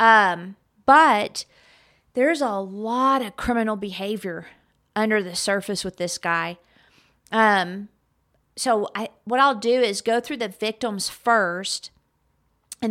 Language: English